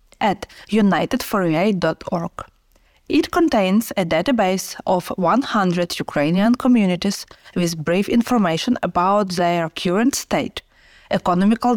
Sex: female